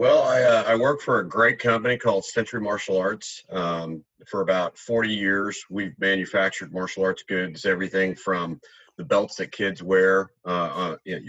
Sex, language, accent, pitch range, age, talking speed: male, English, American, 85-105 Hz, 40-59, 165 wpm